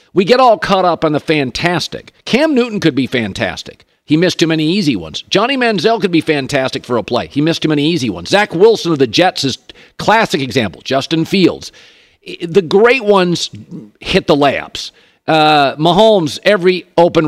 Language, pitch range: English, 140-195 Hz